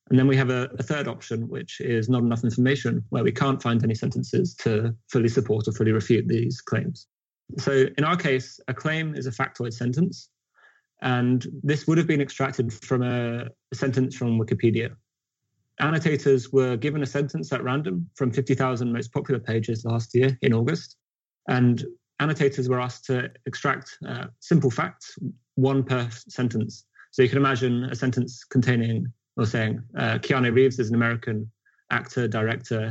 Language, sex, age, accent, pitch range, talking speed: English, male, 20-39, British, 115-135 Hz, 170 wpm